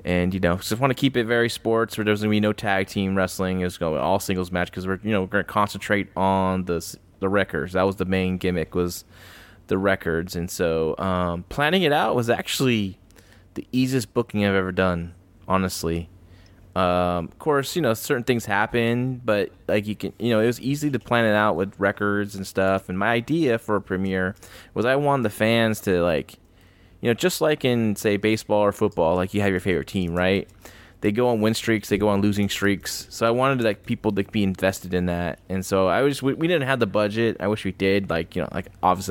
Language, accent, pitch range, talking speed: English, American, 95-110 Hz, 230 wpm